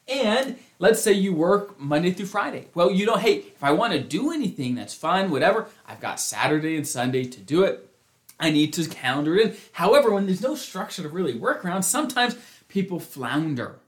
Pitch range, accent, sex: 160-220 Hz, American, male